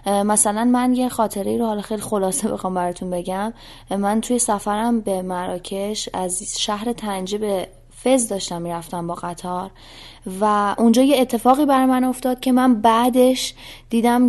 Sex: female